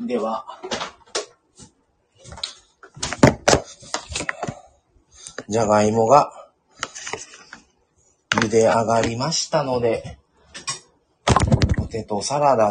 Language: Japanese